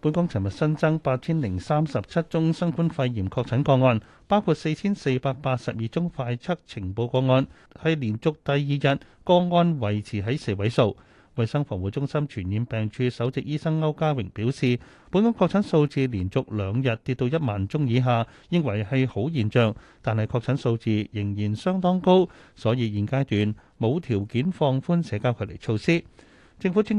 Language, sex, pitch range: Chinese, male, 110-155 Hz